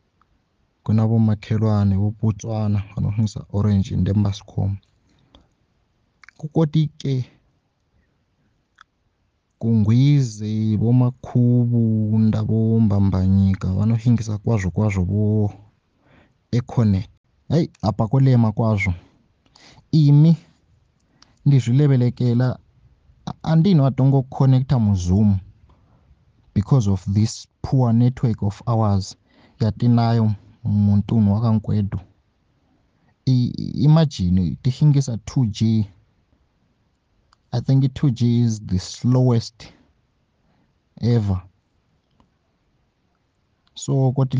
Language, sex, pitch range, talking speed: English, male, 105-135 Hz, 70 wpm